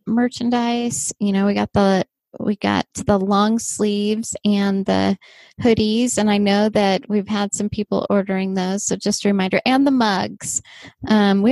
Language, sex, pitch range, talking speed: English, female, 190-225 Hz, 170 wpm